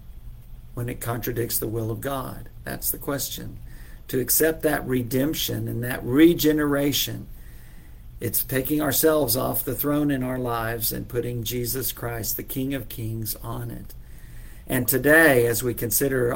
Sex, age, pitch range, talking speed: male, 50-69, 115-140 Hz, 150 wpm